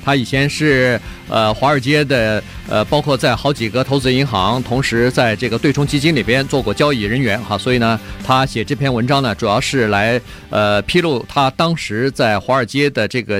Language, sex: Chinese, male